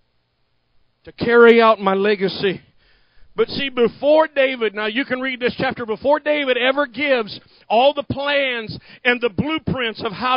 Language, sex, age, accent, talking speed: English, male, 50-69, American, 155 wpm